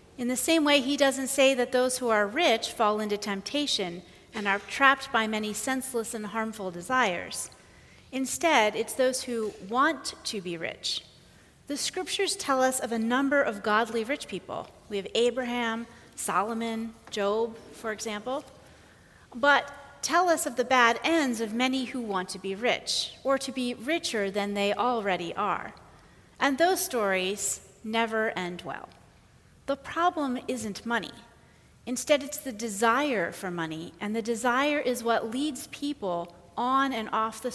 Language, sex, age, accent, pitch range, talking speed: English, female, 40-59, American, 215-275 Hz, 160 wpm